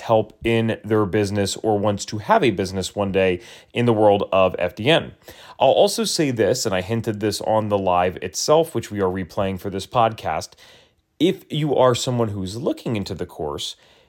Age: 30-49